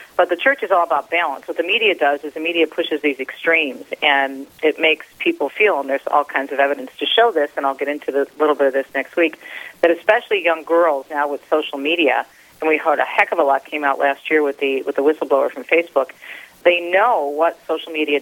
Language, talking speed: English, 245 wpm